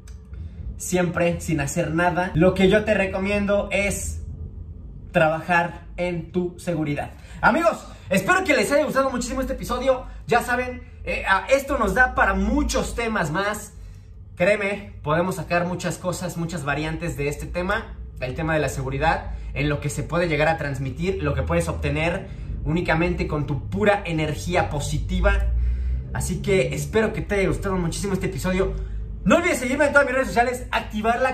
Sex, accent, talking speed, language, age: male, Mexican, 165 wpm, English, 30-49